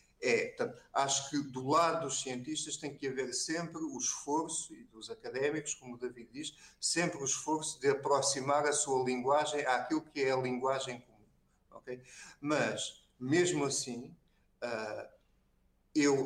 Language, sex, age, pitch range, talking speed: Portuguese, male, 50-69, 130-155 Hz, 135 wpm